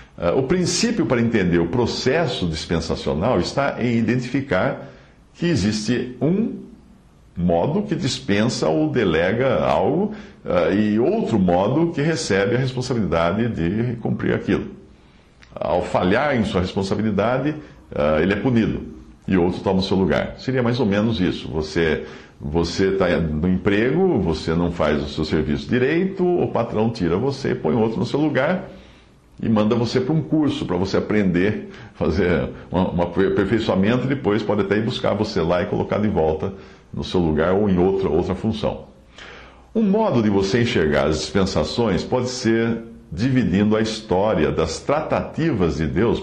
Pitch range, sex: 90-135 Hz, male